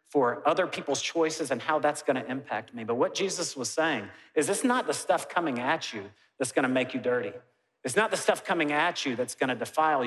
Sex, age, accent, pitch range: male, 40-59, American, 130-160 Hz